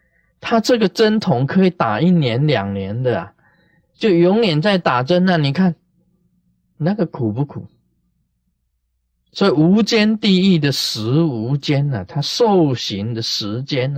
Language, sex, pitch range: Chinese, male, 115-170 Hz